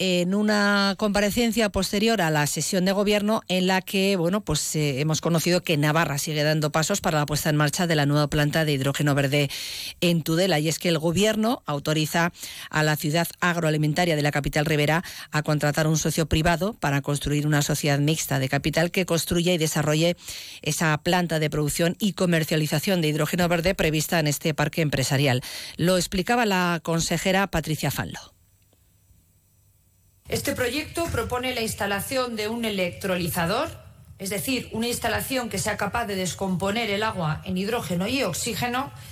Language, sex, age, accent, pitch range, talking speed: Spanish, female, 40-59, Spanish, 150-215 Hz, 165 wpm